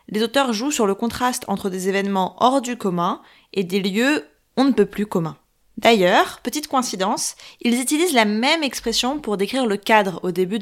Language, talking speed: French, 190 wpm